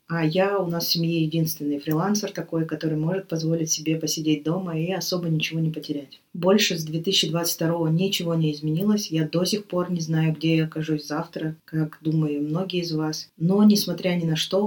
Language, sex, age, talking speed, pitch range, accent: Russian, female, 20-39, 190 wpm, 155-180 Hz, native